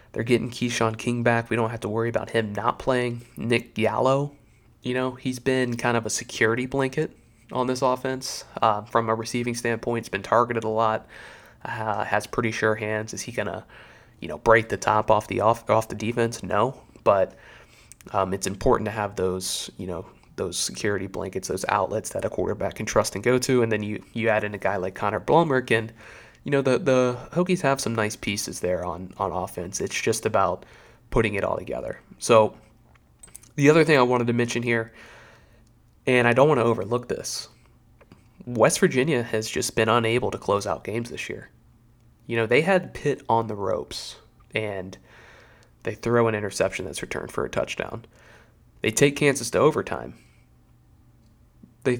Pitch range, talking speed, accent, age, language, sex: 110-125 Hz, 190 wpm, American, 20-39, English, male